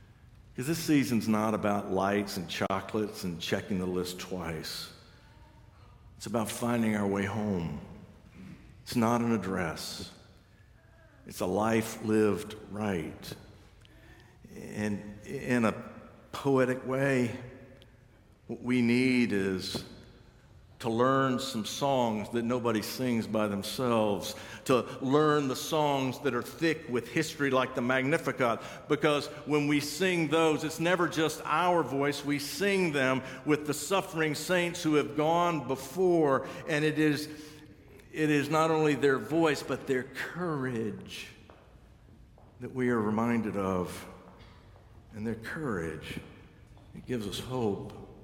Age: 60-79